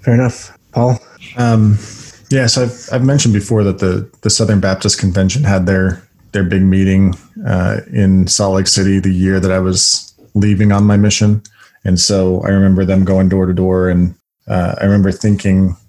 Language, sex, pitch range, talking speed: English, male, 95-105 Hz, 185 wpm